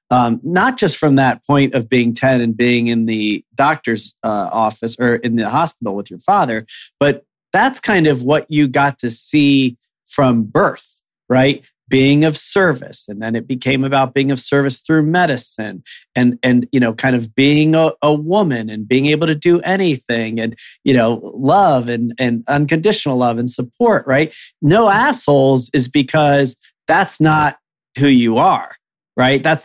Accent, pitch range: American, 125-150 Hz